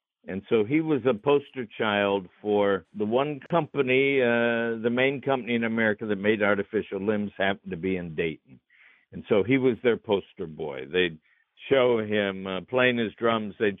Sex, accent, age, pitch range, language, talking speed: male, American, 60-79, 100-120 Hz, English, 180 wpm